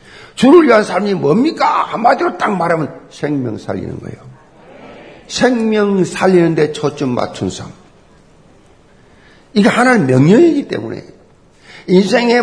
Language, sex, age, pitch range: Korean, male, 50-69, 170-255 Hz